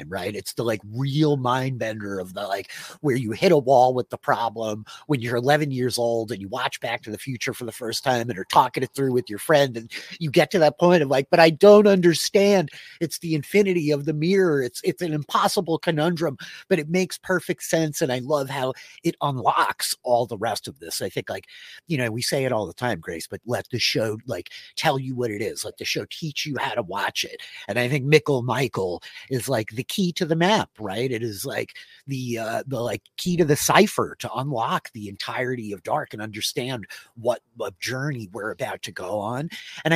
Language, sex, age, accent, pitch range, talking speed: English, male, 30-49, American, 120-160 Hz, 230 wpm